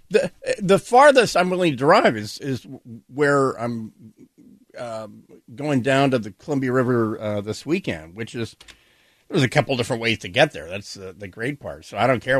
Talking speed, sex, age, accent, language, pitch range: 210 wpm, male, 50-69, American, English, 125-170 Hz